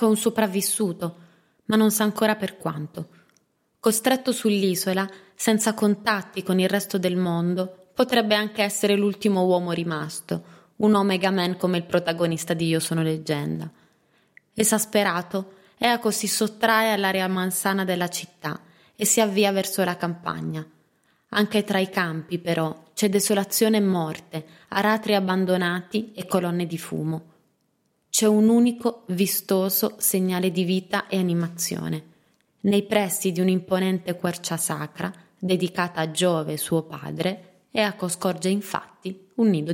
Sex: female